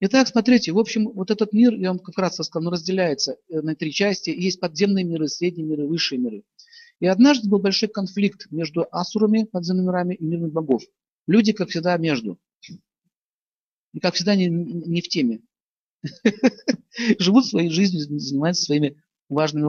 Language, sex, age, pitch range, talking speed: Russian, male, 50-69, 155-210 Hz, 160 wpm